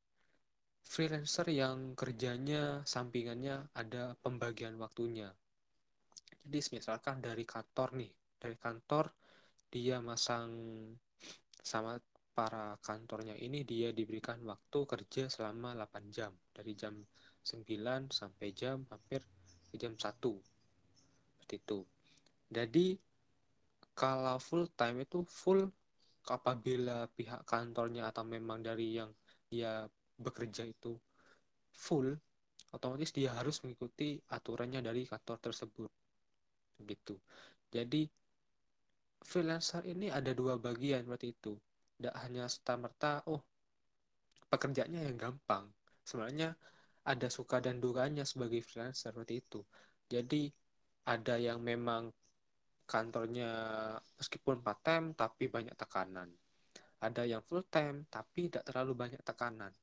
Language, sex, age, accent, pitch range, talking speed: Indonesian, male, 20-39, native, 110-130 Hz, 105 wpm